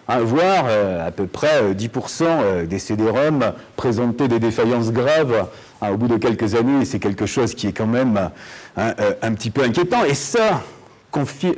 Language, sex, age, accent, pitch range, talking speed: French, male, 50-69, French, 105-150 Hz, 190 wpm